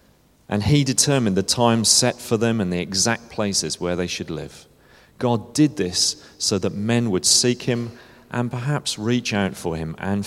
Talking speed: 185 wpm